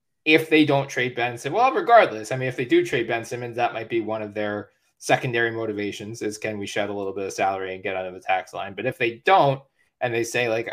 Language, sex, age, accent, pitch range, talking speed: English, male, 20-39, American, 105-120 Hz, 270 wpm